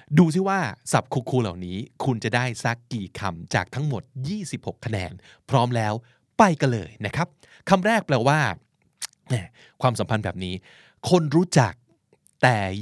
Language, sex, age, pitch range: Thai, male, 20-39, 115-155 Hz